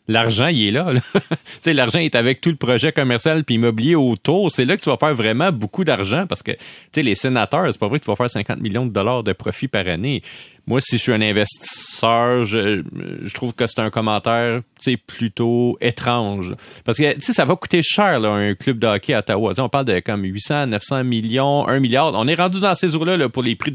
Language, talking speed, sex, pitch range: French, 240 wpm, male, 110-155 Hz